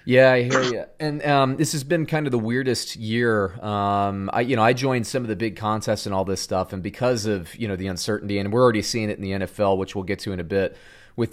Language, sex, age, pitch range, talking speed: English, male, 30-49, 95-125 Hz, 275 wpm